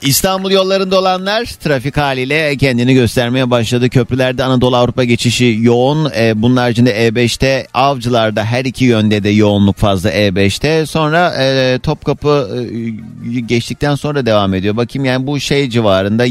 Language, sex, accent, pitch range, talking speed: Turkish, male, native, 100-135 Hz, 140 wpm